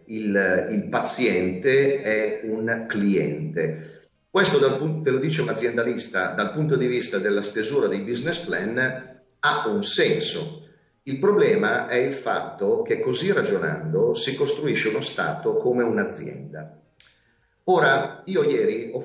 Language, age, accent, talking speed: Italian, 40-59, native, 140 wpm